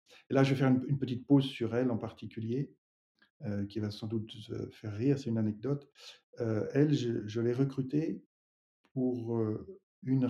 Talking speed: 180 wpm